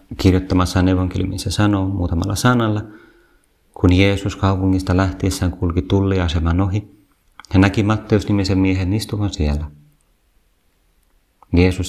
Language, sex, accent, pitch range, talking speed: Finnish, male, native, 90-105 Hz, 110 wpm